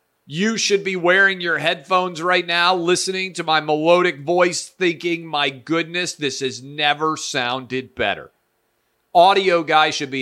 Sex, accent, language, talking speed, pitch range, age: male, American, English, 145 wpm, 125-165 Hz, 40-59